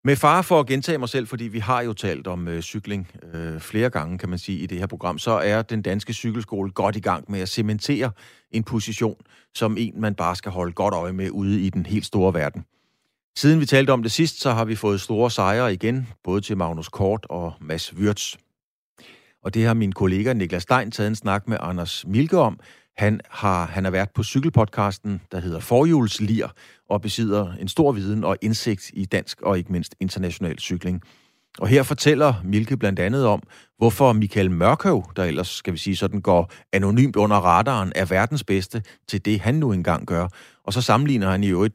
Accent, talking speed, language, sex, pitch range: native, 210 wpm, Danish, male, 95-115 Hz